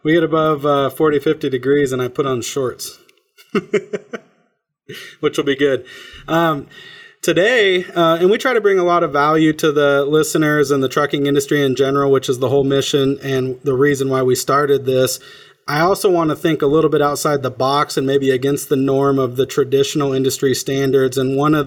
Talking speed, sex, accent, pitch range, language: 200 wpm, male, American, 135-150 Hz, English